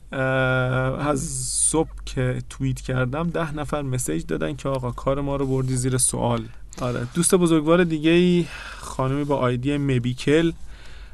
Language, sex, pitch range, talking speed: Persian, male, 125-145 Hz, 135 wpm